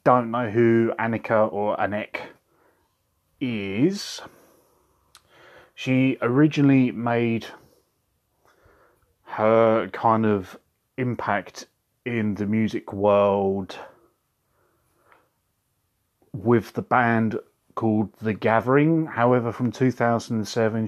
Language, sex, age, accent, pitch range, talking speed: English, male, 30-49, British, 105-135 Hz, 80 wpm